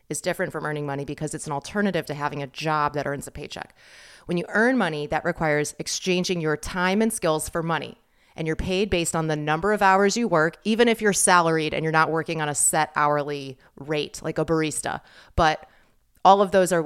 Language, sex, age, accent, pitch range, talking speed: English, female, 30-49, American, 150-190 Hz, 220 wpm